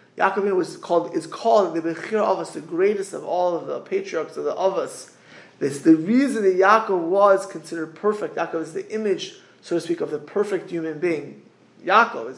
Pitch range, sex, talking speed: 170-240 Hz, male, 205 wpm